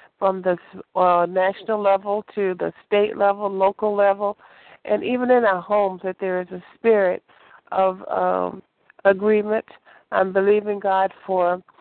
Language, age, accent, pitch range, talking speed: English, 50-69, American, 185-210 Hz, 140 wpm